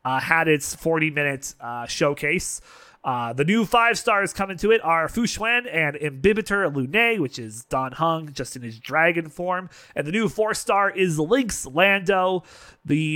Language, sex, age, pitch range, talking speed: English, male, 30-49, 145-195 Hz, 165 wpm